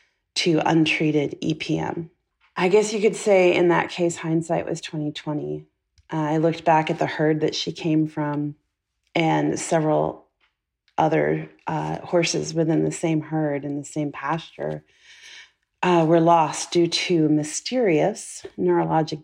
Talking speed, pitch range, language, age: 145 wpm, 155-185 Hz, English, 30-49